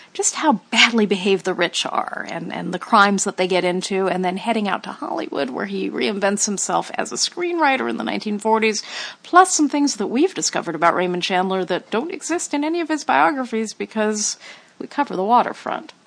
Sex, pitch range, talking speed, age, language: female, 190-265 Hz, 200 wpm, 50-69, English